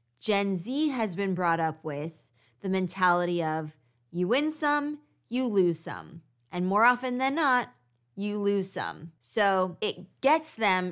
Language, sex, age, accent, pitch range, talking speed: English, female, 20-39, American, 165-210 Hz, 155 wpm